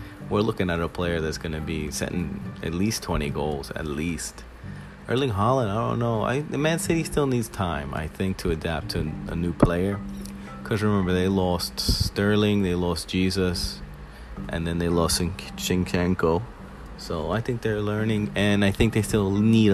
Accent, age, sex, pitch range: American, 30-49, male, 80-100 Hz